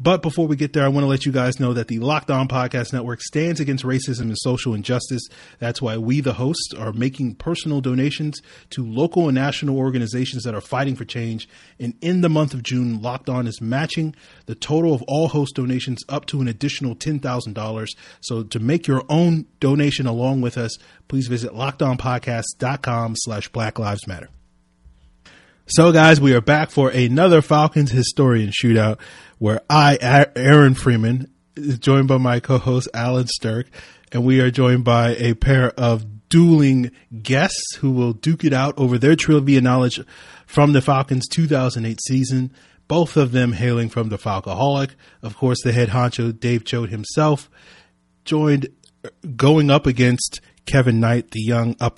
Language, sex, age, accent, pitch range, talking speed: English, male, 30-49, American, 115-140 Hz, 170 wpm